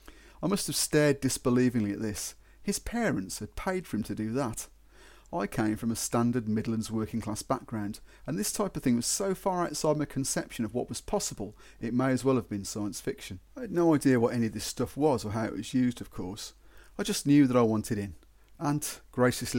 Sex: male